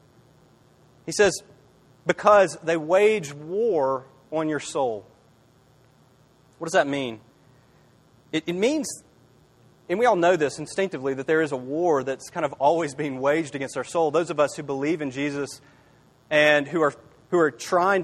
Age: 30-49